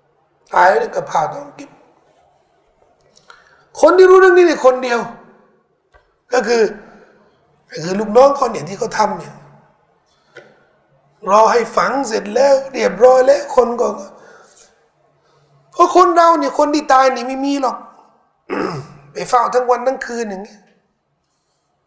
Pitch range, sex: 210-275 Hz, male